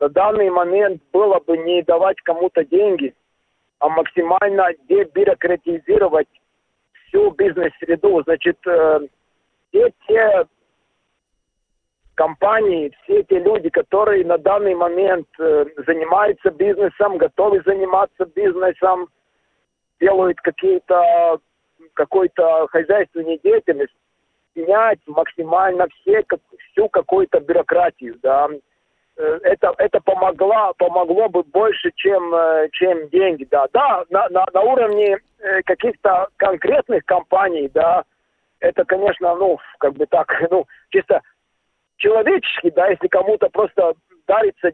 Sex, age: male, 50-69